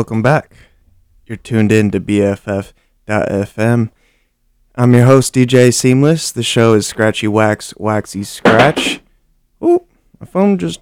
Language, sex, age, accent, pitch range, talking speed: English, male, 20-39, American, 105-130 Hz, 130 wpm